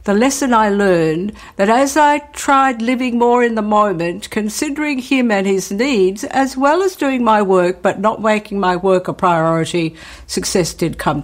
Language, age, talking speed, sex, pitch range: English, 60-79, 180 wpm, female, 180-240 Hz